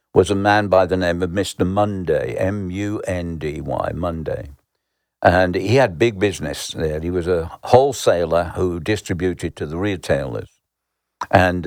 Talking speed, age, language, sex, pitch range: 140 wpm, 60-79, English, male, 85-110 Hz